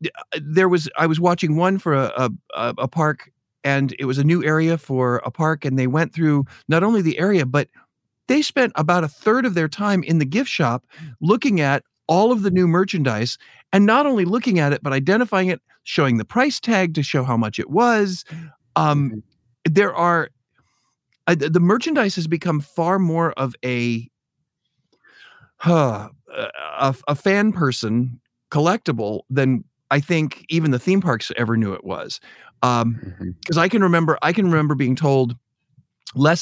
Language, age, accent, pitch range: English, 40-59, American, 125-175 Hz